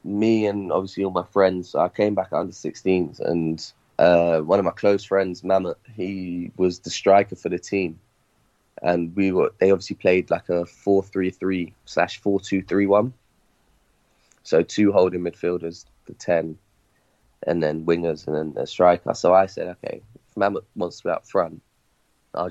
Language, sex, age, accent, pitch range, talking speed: English, male, 20-39, British, 85-100 Hz, 180 wpm